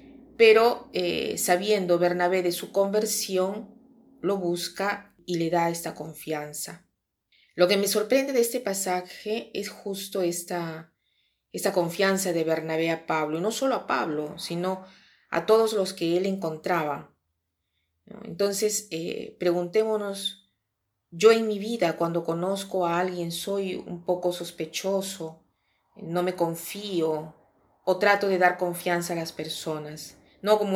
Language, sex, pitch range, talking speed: Spanish, female, 165-195 Hz, 135 wpm